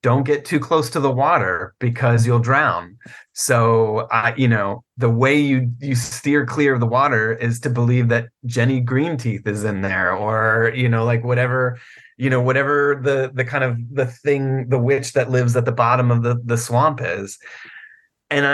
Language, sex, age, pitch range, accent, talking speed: English, male, 30-49, 115-135 Hz, American, 195 wpm